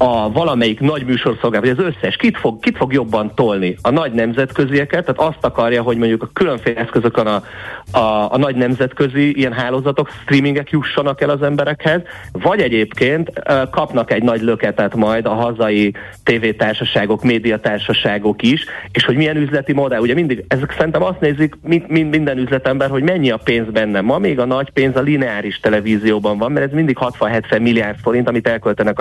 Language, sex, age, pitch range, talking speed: Hungarian, male, 30-49, 110-140 Hz, 170 wpm